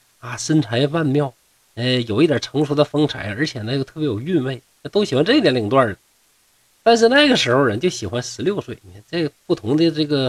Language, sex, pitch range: Chinese, male, 115-175 Hz